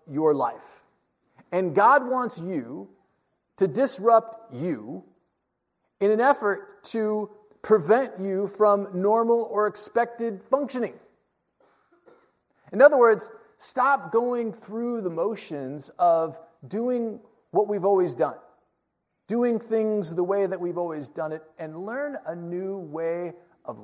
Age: 40-59